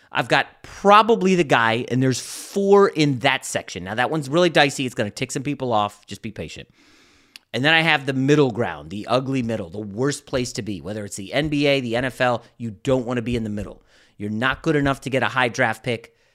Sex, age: male, 30-49